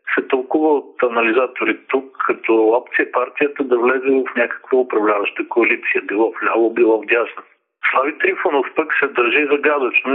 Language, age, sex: Bulgarian, 50-69, male